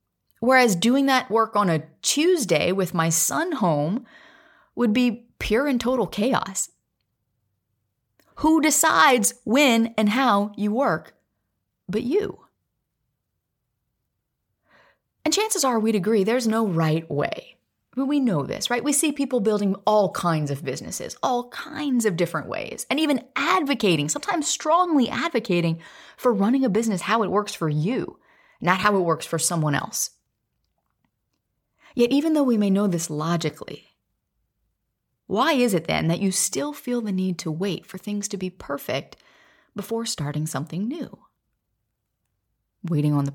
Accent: American